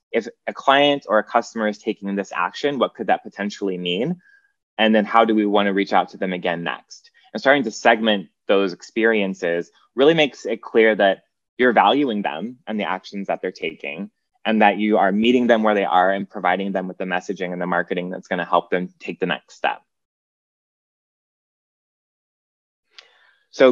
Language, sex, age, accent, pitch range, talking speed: English, male, 20-39, American, 95-120 Hz, 190 wpm